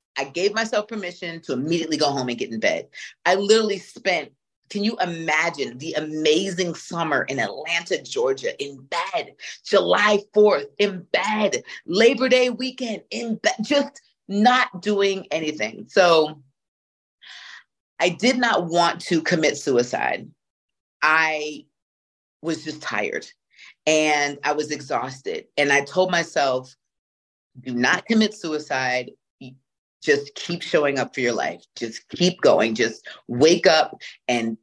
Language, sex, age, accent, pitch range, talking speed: English, female, 40-59, American, 135-200 Hz, 135 wpm